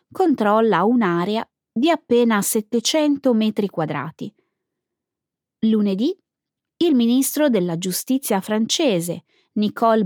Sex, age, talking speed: female, 20-39, 85 wpm